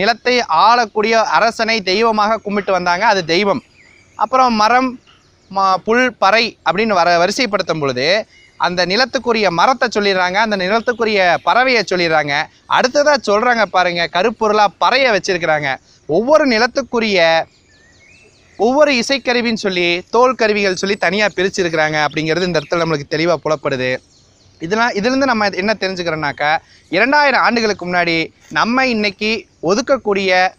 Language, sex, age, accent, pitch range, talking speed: Tamil, male, 20-39, native, 175-225 Hz, 110 wpm